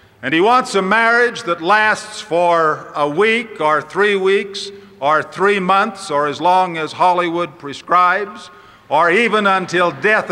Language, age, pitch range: English, 50-69, 160-205 Hz